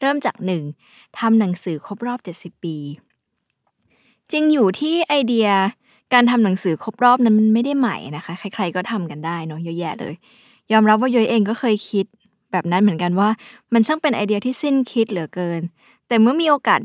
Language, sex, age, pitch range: Thai, female, 20-39, 180-245 Hz